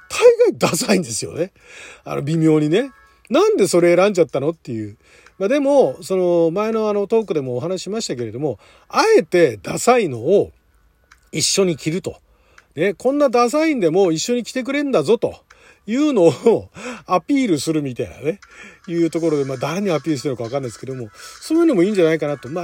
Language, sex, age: Japanese, male, 40-59